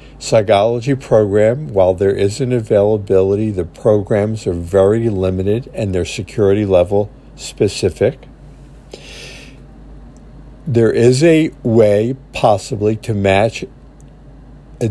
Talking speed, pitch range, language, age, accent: 100 wpm, 100-125 Hz, English, 50-69, American